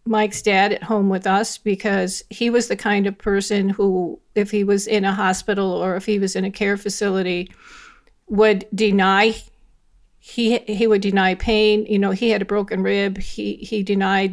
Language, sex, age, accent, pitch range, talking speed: English, female, 50-69, American, 195-220 Hz, 190 wpm